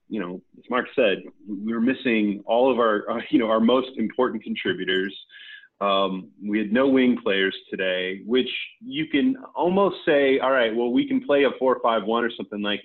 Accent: American